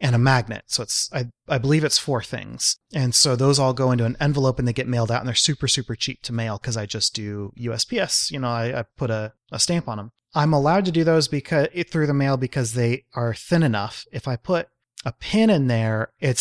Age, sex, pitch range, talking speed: 30-49, male, 120-145 Hz, 250 wpm